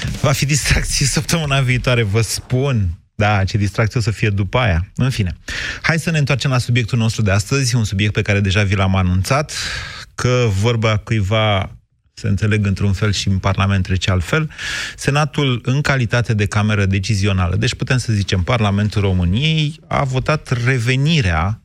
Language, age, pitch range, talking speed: Romanian, 30-49, 100-130 Hz, 170 wpm